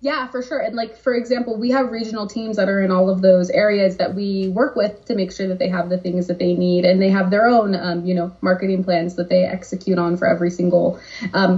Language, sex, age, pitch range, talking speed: English, female, 20-39, 185-225 Hz, 265 wpm